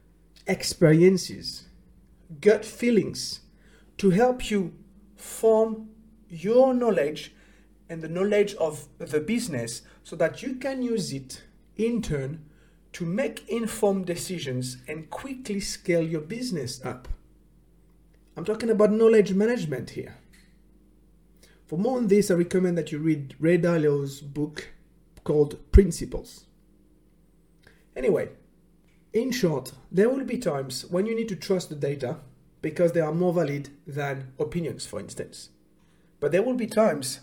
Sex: male